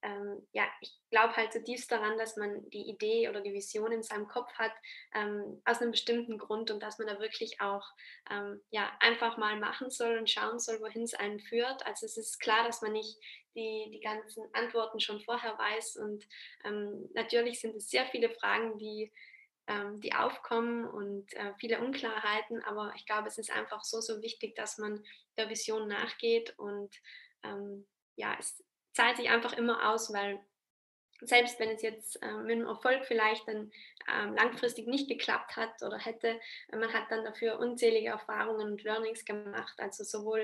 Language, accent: German, German